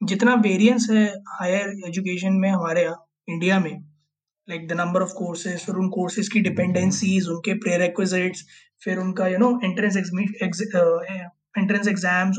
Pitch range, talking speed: 175-215 Hz, 130 wpm